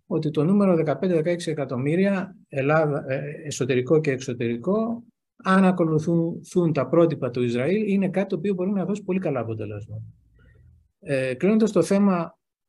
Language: Greek